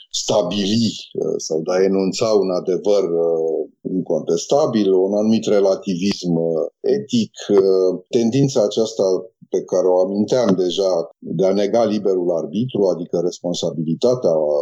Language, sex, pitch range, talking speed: Romanian, male, 90-115 Hz, 110 wpm